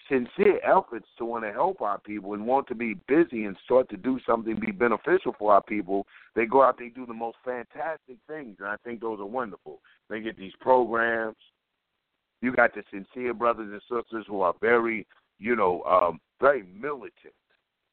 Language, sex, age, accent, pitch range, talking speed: English, male, 50-69, American, 110-130 Hz, 195 wpm